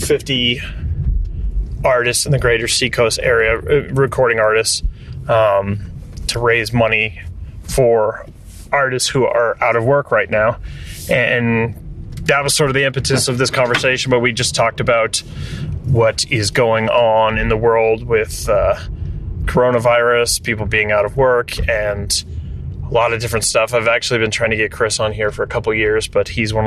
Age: 30-49